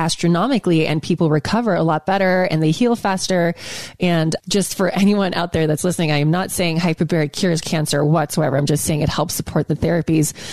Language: English